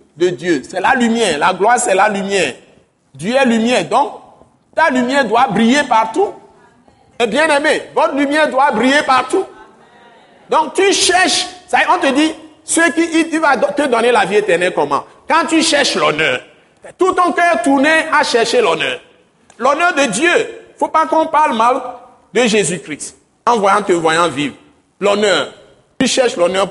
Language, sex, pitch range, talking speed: French, male, 200-315 Hz, 170 wpm